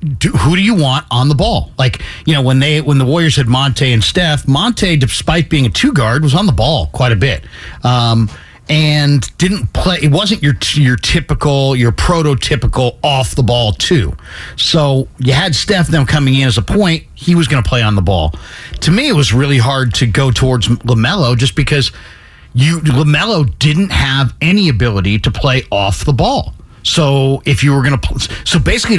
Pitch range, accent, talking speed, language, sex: 115-155 Hz, American, 200 wpm, English, male